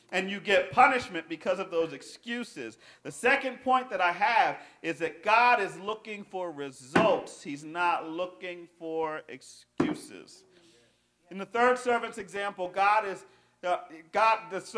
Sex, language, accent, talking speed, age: male, English, American, 145 wpm, 40-59